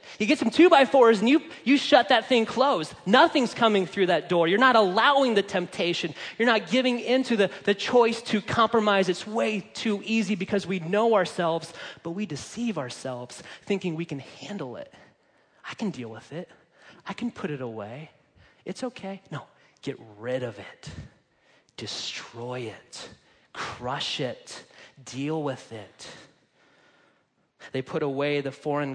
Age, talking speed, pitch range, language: 30-49, 160 wpm, 130-195 Hz, English